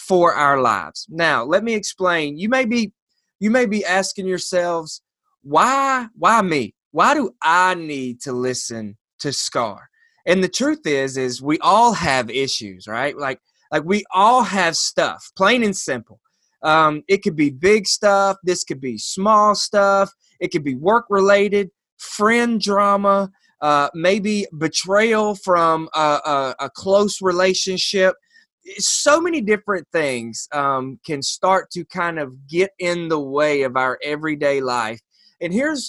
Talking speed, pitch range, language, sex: 155 wpm, 145-210 Hz, English, male